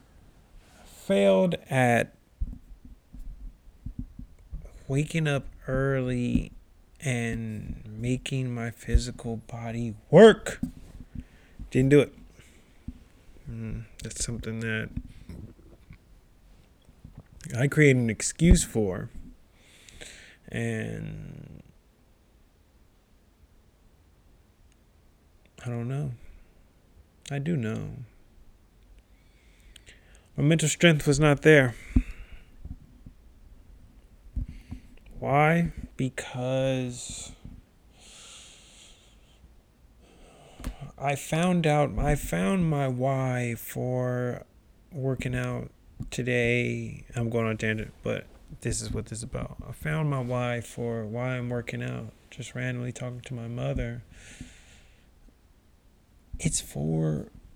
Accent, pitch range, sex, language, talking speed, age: American, 90-130 Hz, male, English, 80 wpm, 30-49